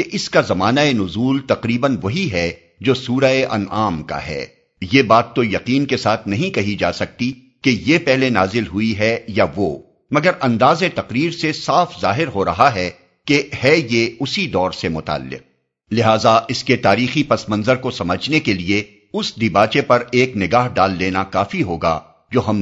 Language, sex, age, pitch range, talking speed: Urdu, male, 50-69, 100-130 Hz, 175 wpm